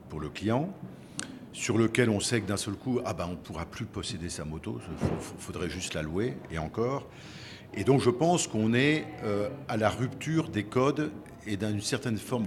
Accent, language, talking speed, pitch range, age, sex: French, French, 205 wpm, 90-120 Hz, 50-69, male